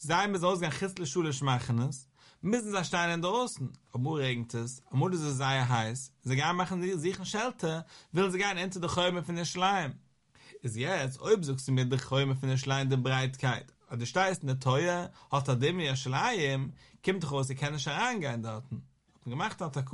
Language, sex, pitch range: English, male, 130-170 Hz